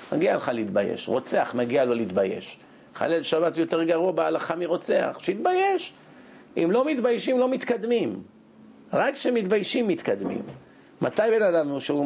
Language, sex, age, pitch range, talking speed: Hebrew, male, 50-69, 150-195 Hz, 130 wpm